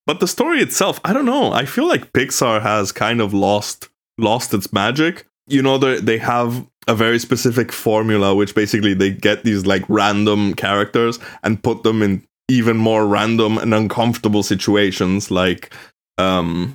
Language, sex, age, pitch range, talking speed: English, male, 20-39, 100-115 Hz, 170 wpm